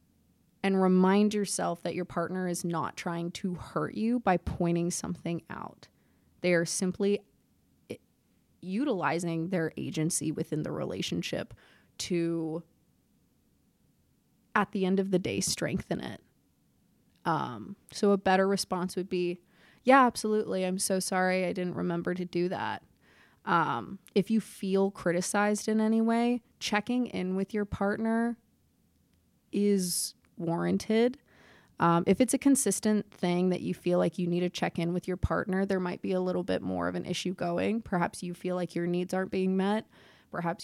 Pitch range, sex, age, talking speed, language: 175-210 Hz, female, 20-39, 160 wpm, English